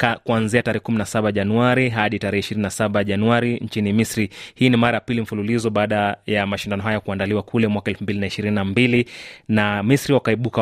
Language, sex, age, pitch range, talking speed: Swahili, male, 30-49, 100-120 Hz, 155 wpm